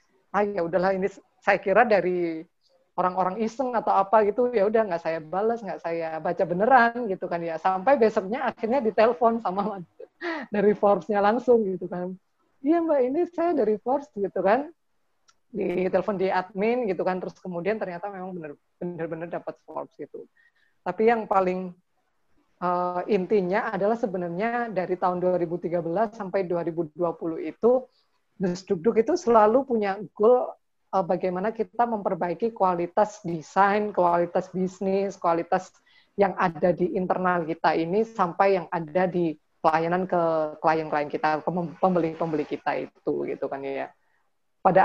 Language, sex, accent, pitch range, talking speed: Indonesian, female, native, 175-215 Hz, 140 wpm